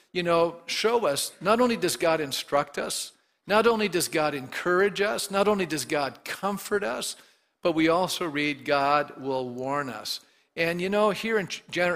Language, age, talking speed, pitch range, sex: English, 50-69, 175 wpm, 145-185 Hz, male